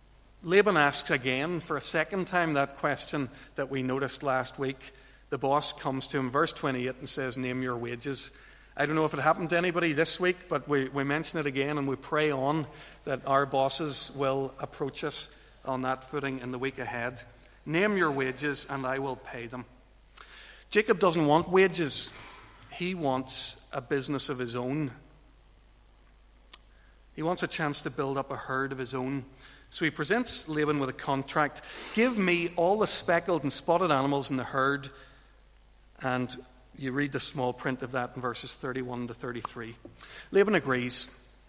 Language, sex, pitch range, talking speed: English, male, 130-155 Hz, 180 wpm